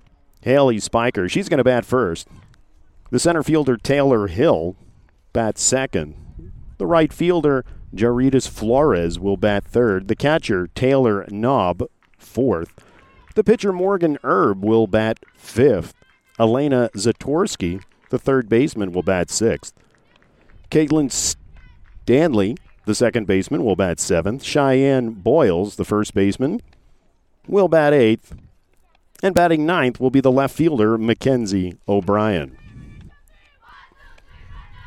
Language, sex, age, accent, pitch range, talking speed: English, male, 50-69, American, 100-130 Hz, 115 wpm